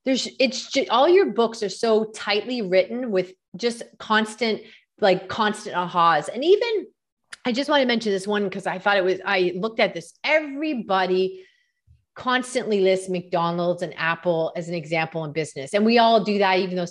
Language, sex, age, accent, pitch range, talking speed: English, female, 30-49, American, 185-275 Hz, 180 wpm